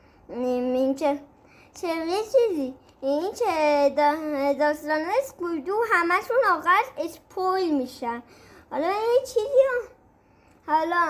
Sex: male